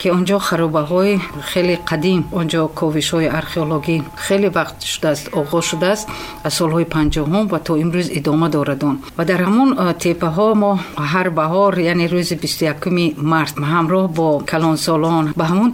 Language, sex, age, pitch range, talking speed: Persian, female, 50-69, 160-200 Hz, 185 wpm